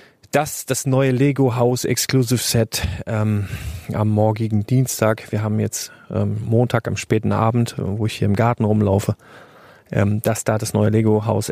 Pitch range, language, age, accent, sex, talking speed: 110-130 Hz, German, 40-59, German, male, 165 wpm